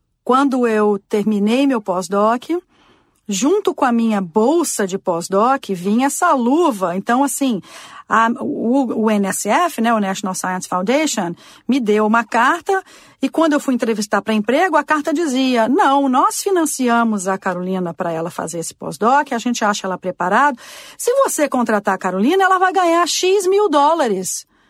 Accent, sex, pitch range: Brazilian, female, 210-305 Hz